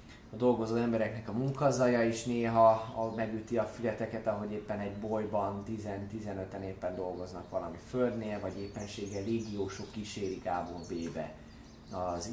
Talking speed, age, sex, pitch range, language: 120 wpm, 20-39, male, 100-120 Hz, Hungarian